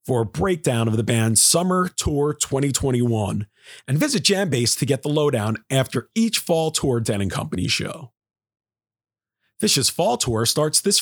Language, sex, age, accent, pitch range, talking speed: English, male, 40-59, American, 110-160 Hz, 160 wpm